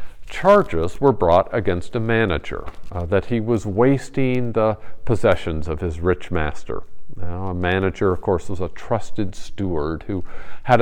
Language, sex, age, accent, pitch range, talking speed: English, male, 50-69, American, 90-130 Hz, 155 wpm